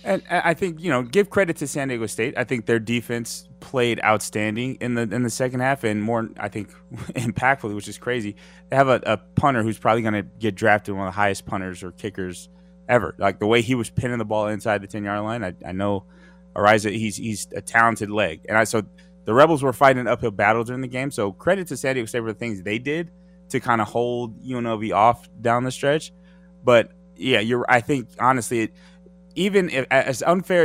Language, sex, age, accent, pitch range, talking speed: English, male, 20-39, American, 105-145 Hz, 230 wpm